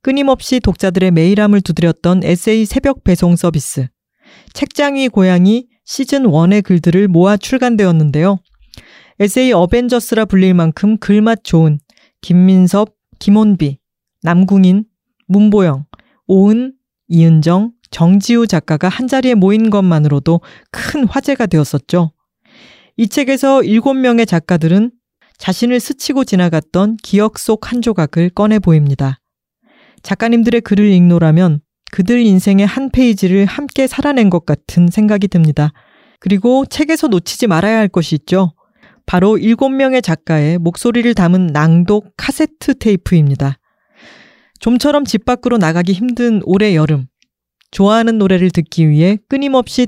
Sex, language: female, Korean